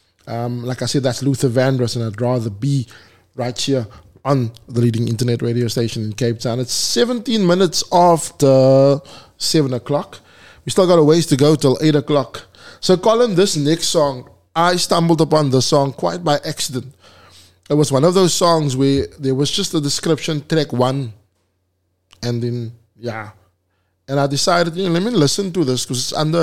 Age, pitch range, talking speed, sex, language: 20-39, 115-150 Hz, 185 wpm, male, English